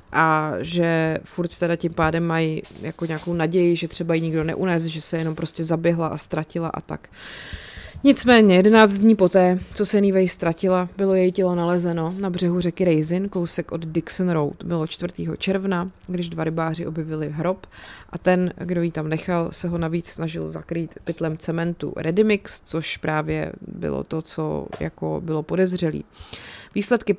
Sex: female